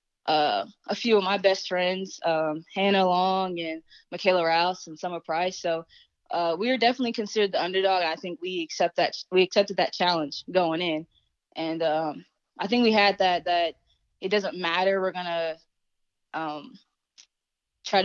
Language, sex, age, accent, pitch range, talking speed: English, female, 20-39, American, 165-190 Hz, 165 wpm